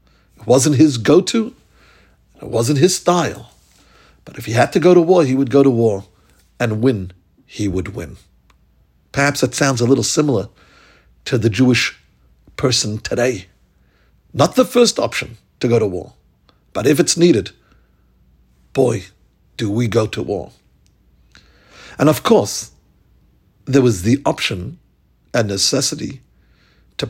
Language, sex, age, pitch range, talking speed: English, male, 60-79, 100-150 Hz, 145 wpm